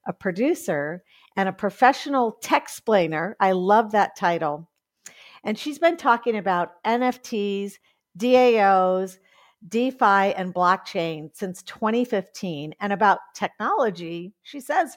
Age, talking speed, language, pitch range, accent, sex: 50-69, 110 wpm, English, 180-240 Hz, American, female